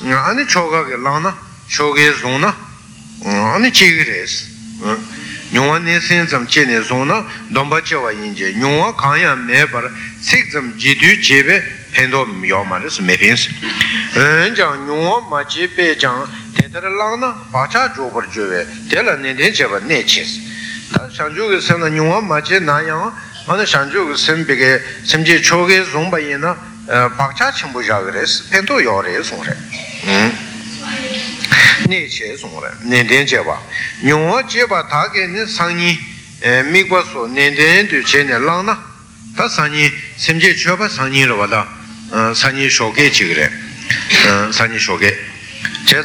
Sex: male